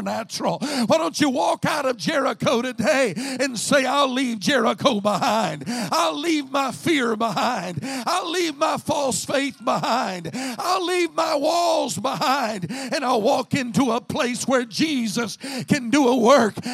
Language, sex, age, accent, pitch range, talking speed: English, male, 50-69, American, 230-290 Hz, 155 wpm